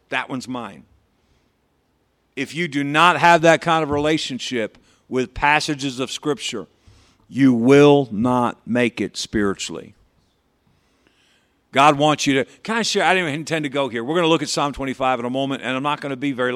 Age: 50-69